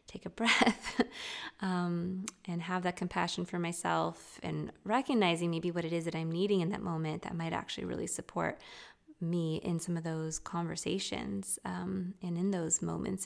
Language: English